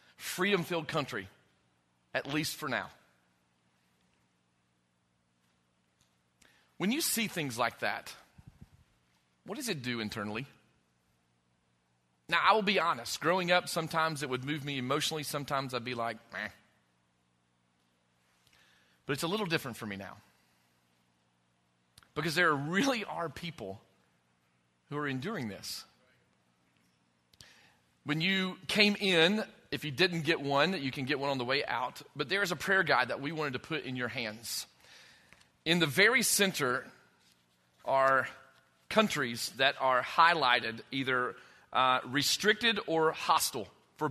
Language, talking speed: English, 135 wpm